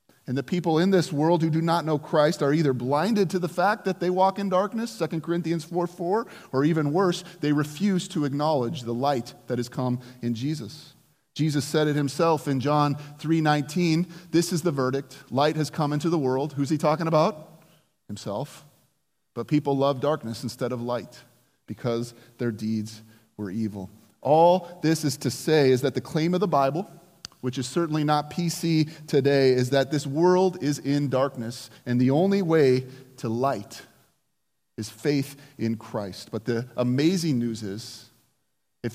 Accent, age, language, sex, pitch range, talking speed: American, 30-49, English, male, 125-160 Hz, 175 wpm